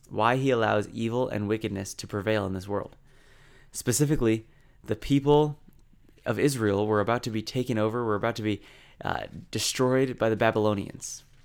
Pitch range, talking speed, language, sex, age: 105-130 Hz, 160 wpm, English, male, 20-39